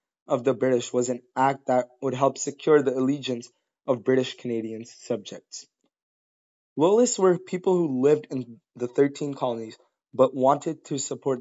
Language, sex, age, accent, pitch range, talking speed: English, male, 20-39, American, 120-140 Hz, 145 wpm